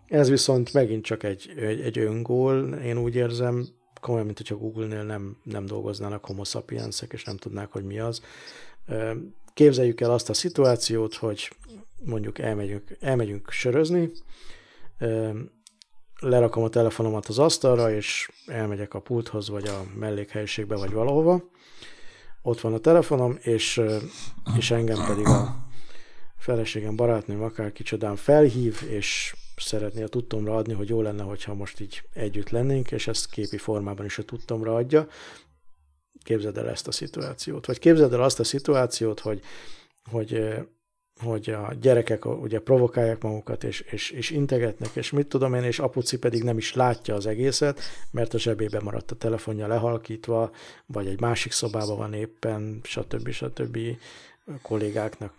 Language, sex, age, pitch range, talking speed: Hungarian, male, 50-69, 105-125 Hz, 145 wpm